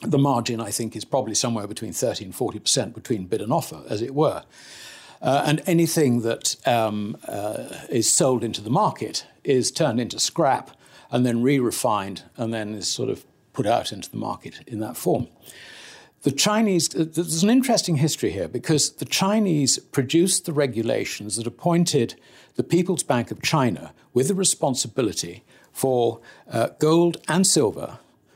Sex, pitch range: male, 120-170 Hz